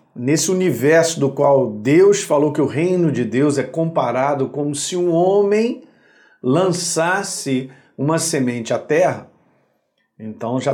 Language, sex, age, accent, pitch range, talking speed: Portuguese, male, 50-69, Brazilian, 135-180 Hz, 135 wpm